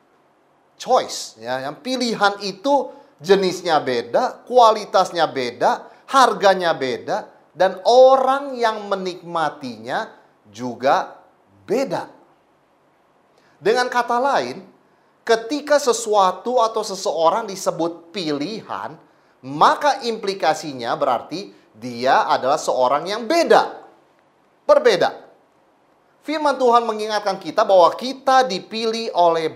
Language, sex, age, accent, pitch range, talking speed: English, male, 30-49, Indonesian, 170-260 Hz, 85 wpm